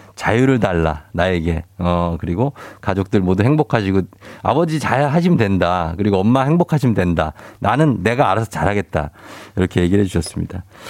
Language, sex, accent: Korean, male, native